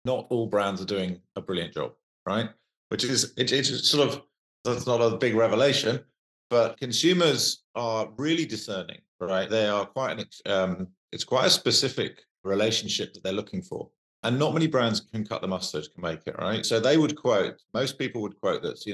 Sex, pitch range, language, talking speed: male, 95-125 Hz, English, 195 wpm